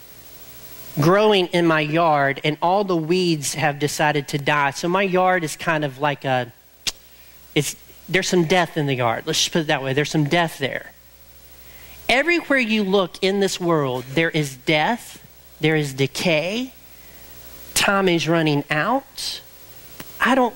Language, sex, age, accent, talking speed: English, male, 40-59, American, 160 wpm